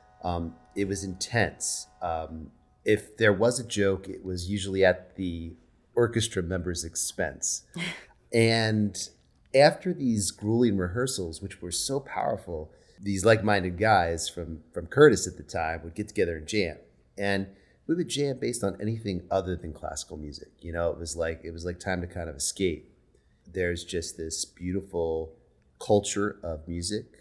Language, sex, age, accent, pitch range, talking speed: English, male, 30-49, American, 80-100 Hz, 160 wpm